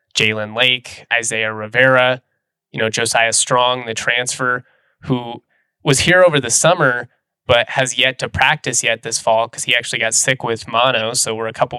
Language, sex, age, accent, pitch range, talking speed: English, male, 20-39, American, 115-130 Hz, 180 wpm